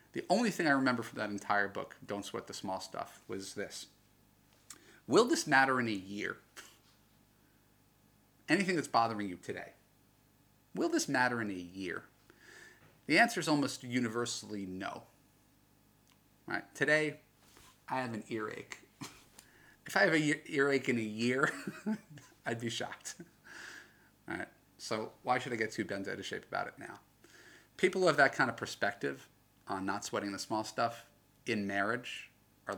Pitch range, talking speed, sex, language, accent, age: 100-130 Hz, 160 wpm, male, English, American, 30-49